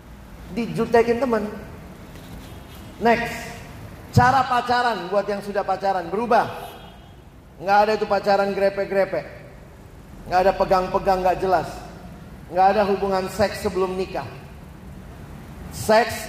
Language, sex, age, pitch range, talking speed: Indonesian, male, 40-59, 185-230 Hz, 100 wpm